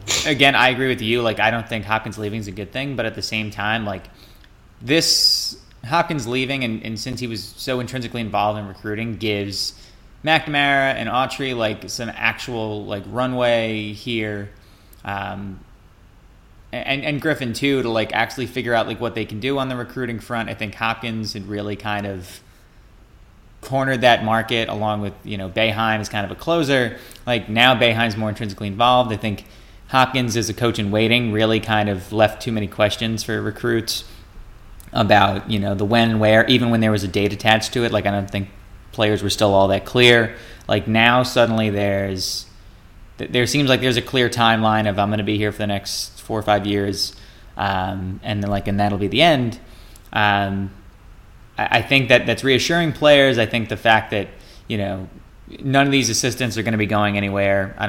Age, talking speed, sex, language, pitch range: 20-39, 200 wpm, male, English, 100-120 Hz